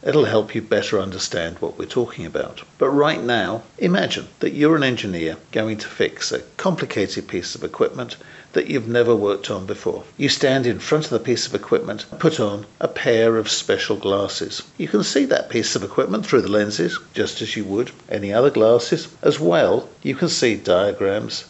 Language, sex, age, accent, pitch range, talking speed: English, male, 50-69, British, 105-130 Hz, 195 wpm